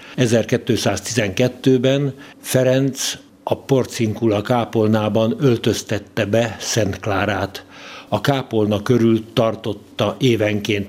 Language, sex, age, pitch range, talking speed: Hungarian, male, 60-79, 105-125 Hz, 75 wpm